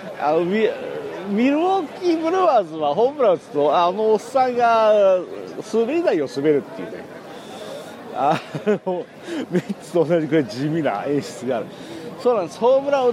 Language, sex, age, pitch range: Japanese, male, 50-69, 160-240 Hz